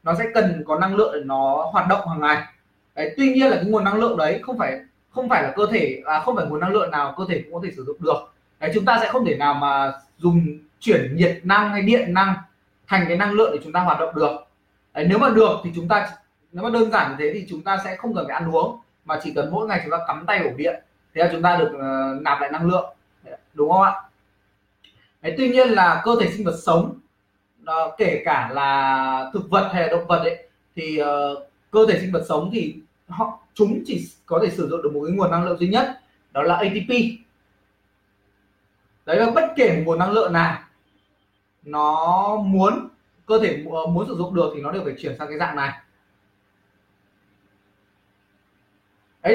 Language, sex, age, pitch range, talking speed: Vietnamese, male, 20-39, 145-215 Hz, 225 wpm